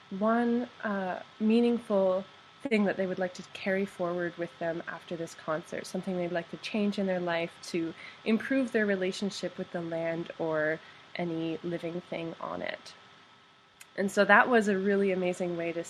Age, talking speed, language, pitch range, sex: 20-39, 175 wpm, English, 170-205 Hz, female